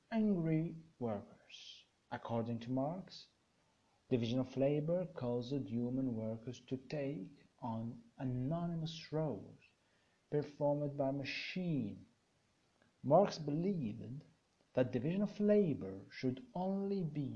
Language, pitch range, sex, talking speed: Arabic, 120-170 Hz, male, 95 wpm